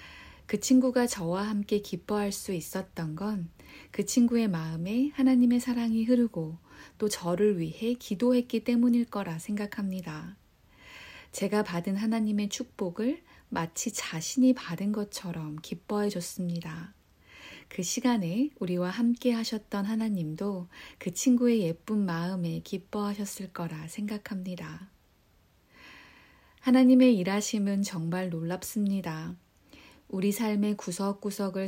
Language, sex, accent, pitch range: Korean, female, native, 175-230 Hz